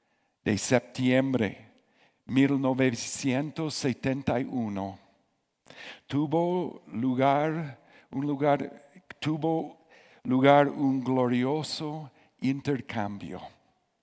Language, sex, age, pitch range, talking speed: Spanish, male, 60-79, 115-145 Hz, 50 wpm